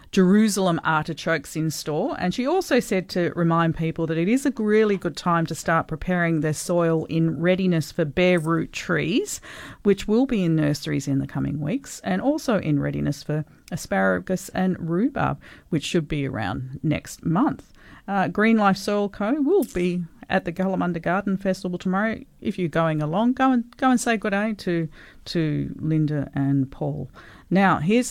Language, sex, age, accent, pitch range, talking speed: English, female, 40-59, Australian, 150-205 Hz, 175 wpm